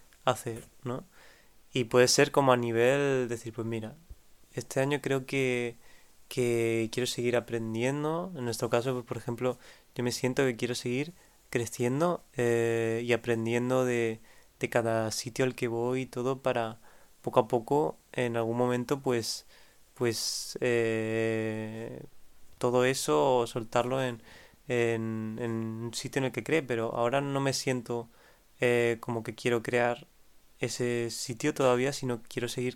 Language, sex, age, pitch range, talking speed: Spanish, male, 20-39, 115-130 Hz, 150 wpm